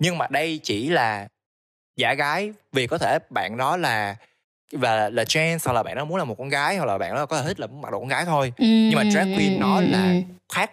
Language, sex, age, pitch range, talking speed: Vietnamese, male, 20-39, 110-150 Hz, 265 wpm